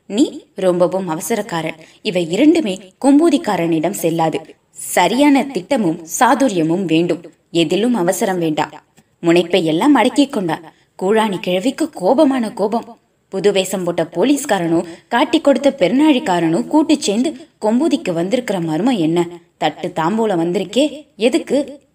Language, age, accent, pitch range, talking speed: Tamil, 20-39, native, 170-270 Hz, 100 wpm